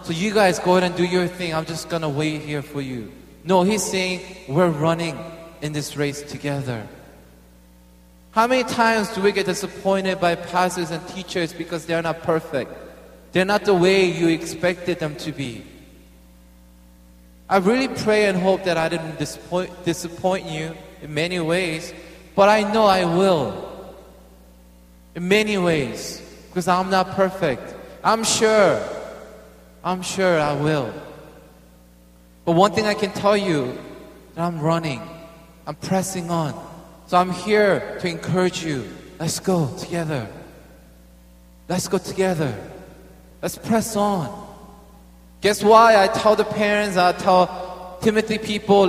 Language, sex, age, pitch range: Korean, male, 20-39, 160-200 Hz